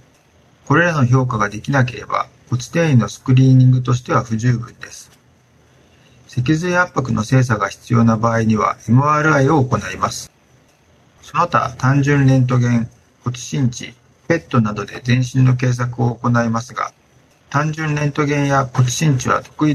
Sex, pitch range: male, 115-145 Hz